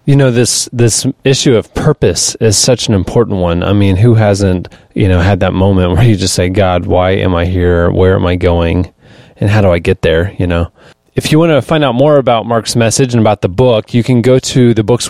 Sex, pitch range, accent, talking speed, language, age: male, 95-120 Hz, American, 245 wpm, English, 30-49